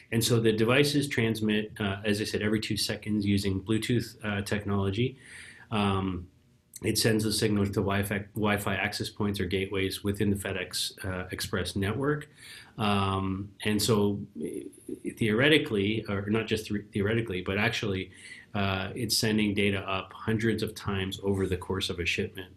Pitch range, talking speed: 95-110 Hz, 155 wpm